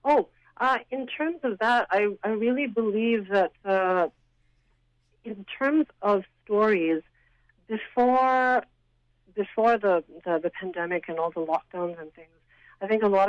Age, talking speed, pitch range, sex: 50-69, 145 wpm, 165-205 Hz, female